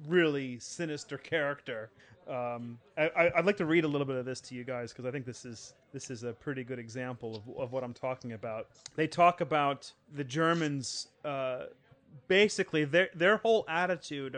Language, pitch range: English, 125-155 Hz